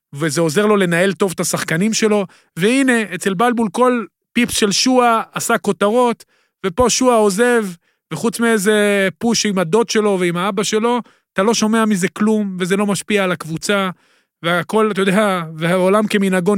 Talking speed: 160 wpm